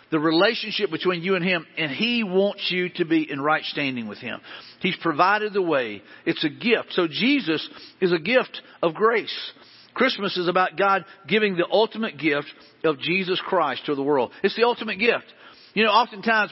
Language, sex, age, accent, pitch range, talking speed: English, male, 50-69, American, 180-225 Hz, 190 wpm